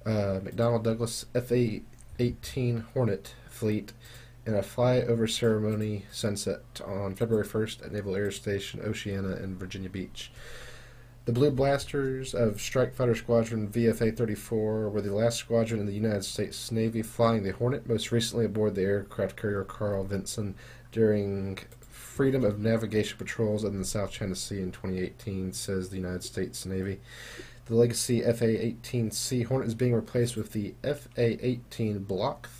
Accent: American